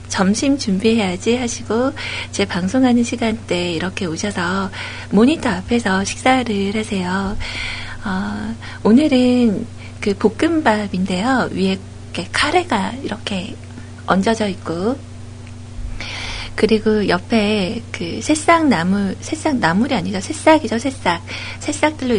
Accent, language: native, Korean